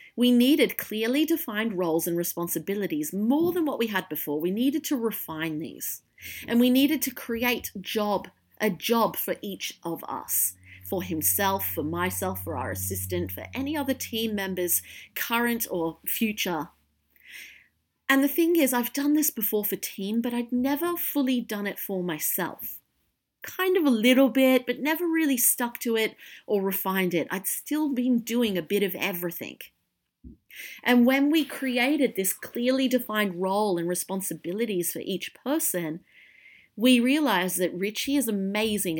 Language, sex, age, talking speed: English, female, 40-59, 160 wpm